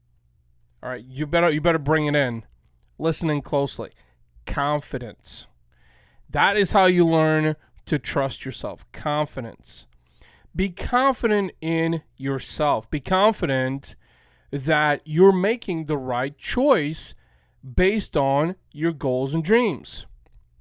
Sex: male